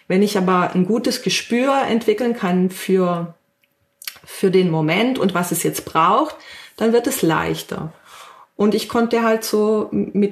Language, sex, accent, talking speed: German, female, German, 155 wpm